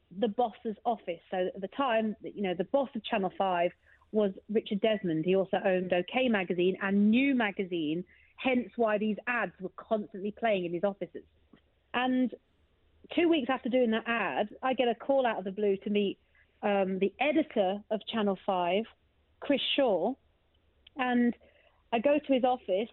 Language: English